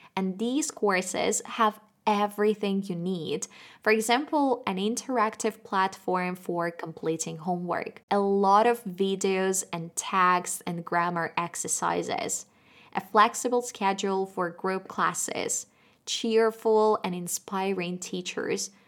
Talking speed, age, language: 110 wpm, 20-39, Russian